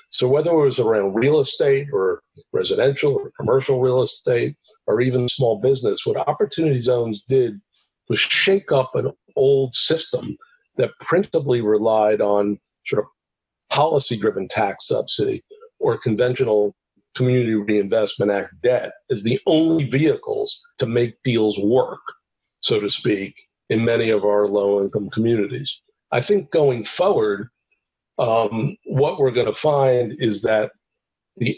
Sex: male